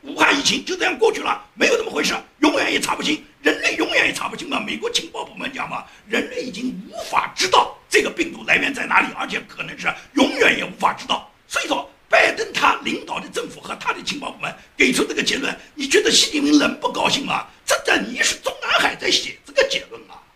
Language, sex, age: Chinese, male, 50-69